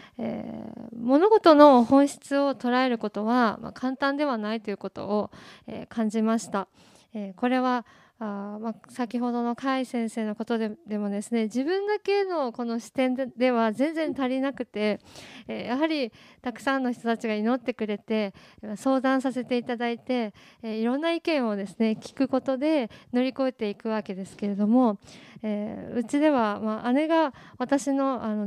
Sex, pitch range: female, 220-280 Hz